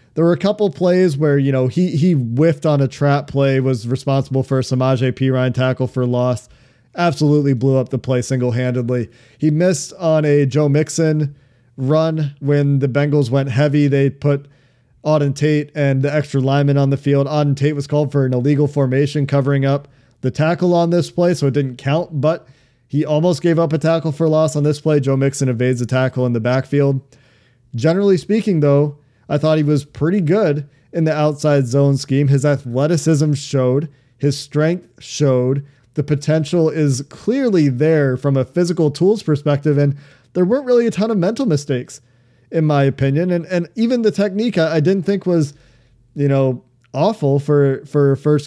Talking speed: 185 wpm